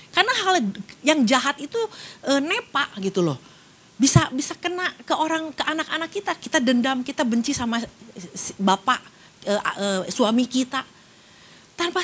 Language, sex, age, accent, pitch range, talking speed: Indonesian, female, 40-59, native, 215-320 Hz, 140 wpm